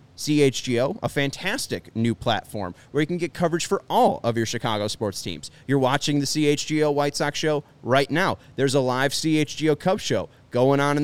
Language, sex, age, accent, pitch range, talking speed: English, male, 30-49, American, 115-145 Hz, 190 wpm